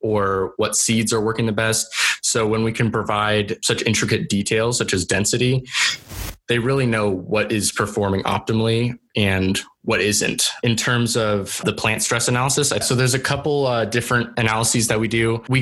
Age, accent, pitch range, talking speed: 20-39, American, 105-120 Hz, 175 wpm